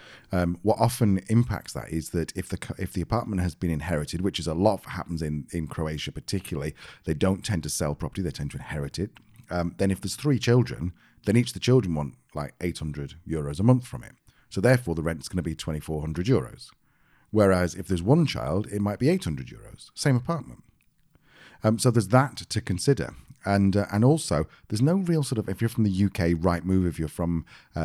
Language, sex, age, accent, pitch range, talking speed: English, male, 40-59, British, 85-115 Hz, 220 wpm